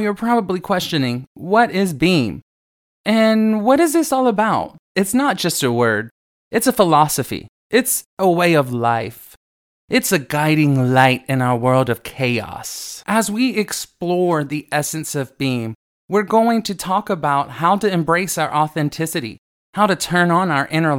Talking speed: 165 wpm